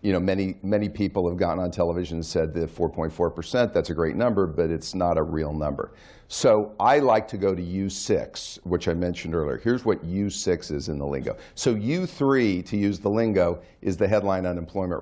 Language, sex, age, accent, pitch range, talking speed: English, male, 50-69, American, 85-110 Hz, 210 wpm